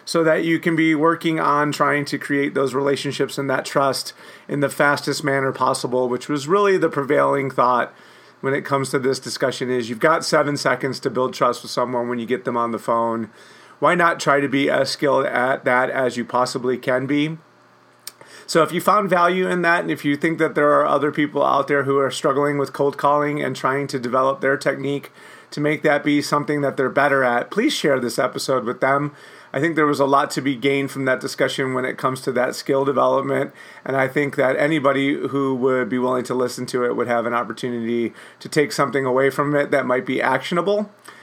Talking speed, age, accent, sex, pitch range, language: 225 wpm, 30-49, American, male, 130-150 Hz, English